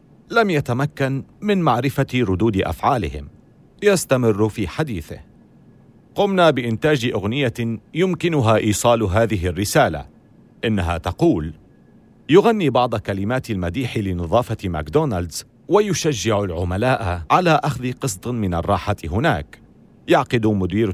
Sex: male